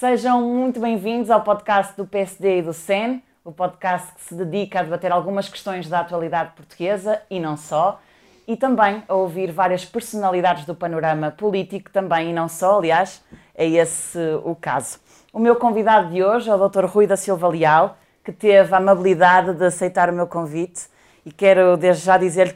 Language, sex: Portuguese, female